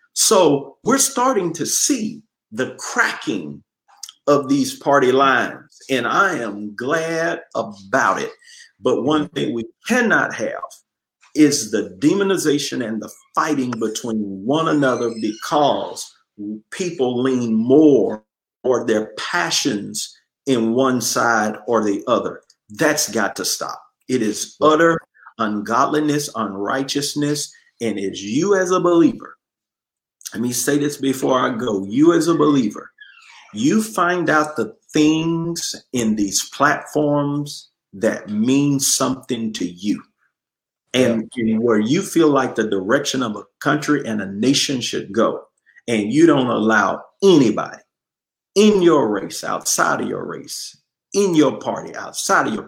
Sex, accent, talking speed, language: male, American, 135 wpm, English